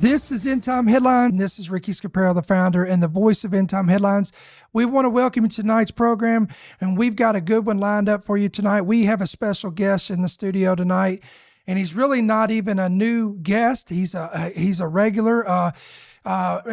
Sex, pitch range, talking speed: male, 185-225 Hz, 220 wpm